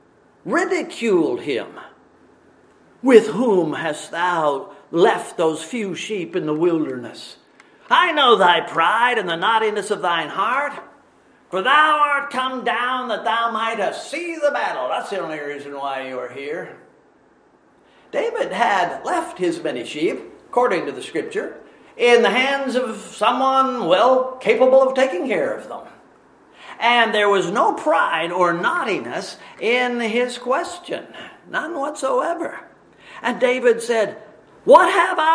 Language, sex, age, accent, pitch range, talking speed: English, male, 50-69, American, 210-340 Hz, 135 wpm